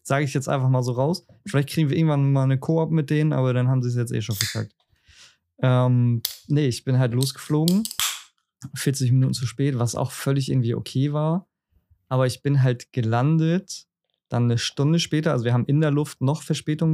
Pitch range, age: 120-140 Hz, 20-39